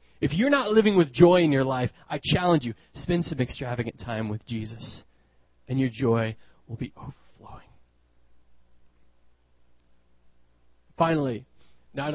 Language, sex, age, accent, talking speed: English, male, 30-49, American, 130 wpm